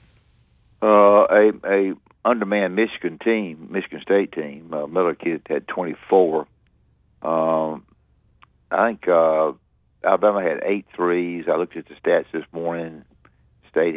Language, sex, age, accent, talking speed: English, male, 60-79, American, 125 wpm